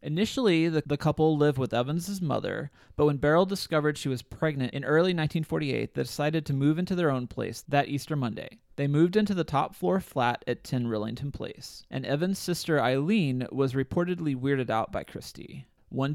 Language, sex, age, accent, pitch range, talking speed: English, male, 30-49, American, 125-160 Hz, 190 wpm